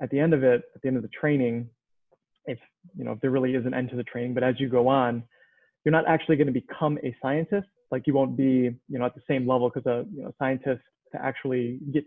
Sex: male